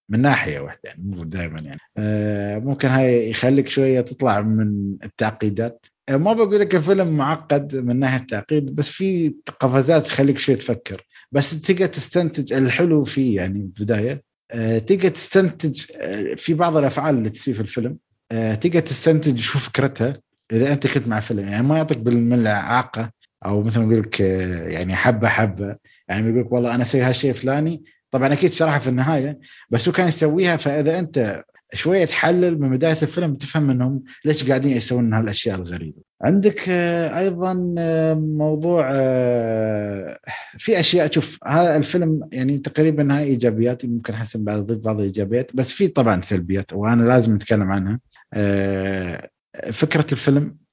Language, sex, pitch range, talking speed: Arabic, male, 110-155 Hz, 145 wpm